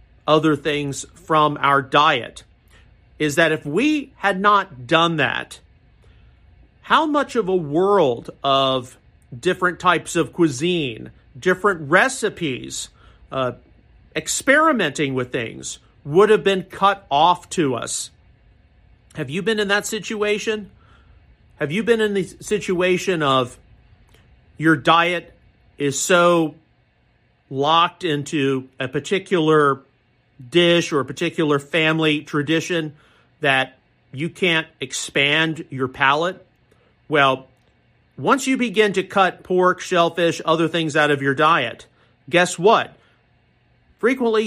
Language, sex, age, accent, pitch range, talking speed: English, male, 50-69, American, 140-190 Hz, 115 wpm